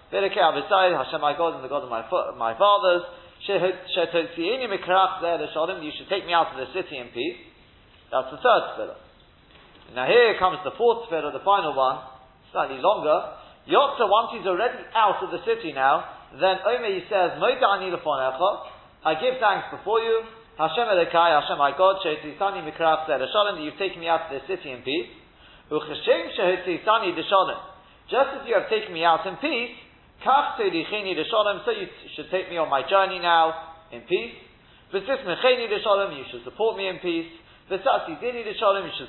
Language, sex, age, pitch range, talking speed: English, male, 40-59, 160-210 Hz, 135 wpm